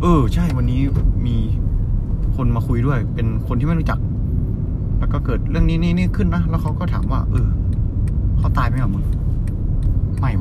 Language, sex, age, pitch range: Thai, male, 20-39, 90-110 Hz